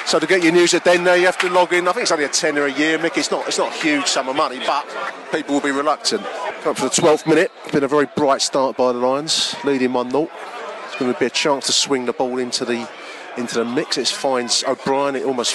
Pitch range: 125-155 Hz